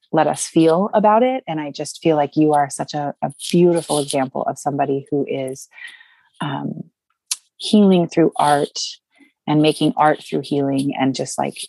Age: 30-49